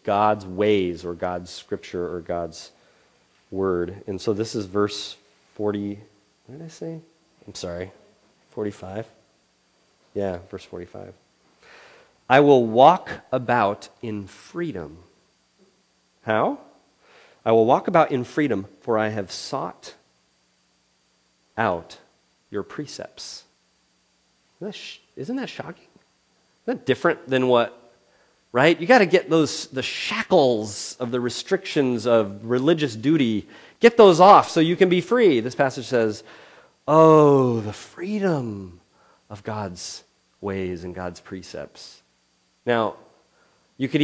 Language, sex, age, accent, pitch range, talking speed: English, male, 30-49, American, 95-140 Hz, 125 wpm